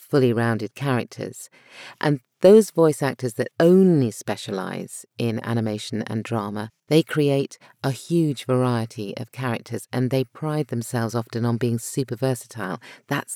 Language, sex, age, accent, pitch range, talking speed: English, female, 40-59, British, 115-140 Hz, 140 wpm